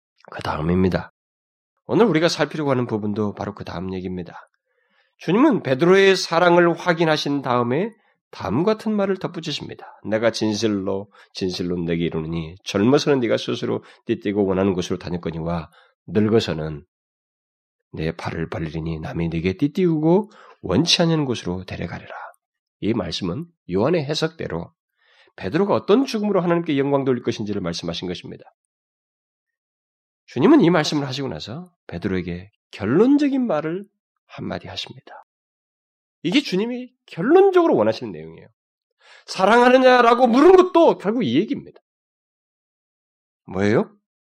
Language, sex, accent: Korean, male, native